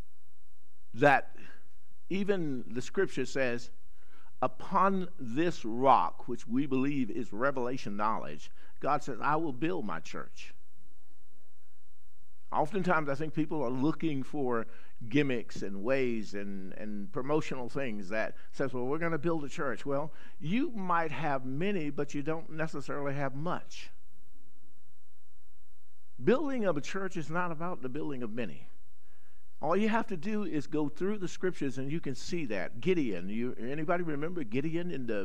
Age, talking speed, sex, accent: 50-69, 150 wpm, male, American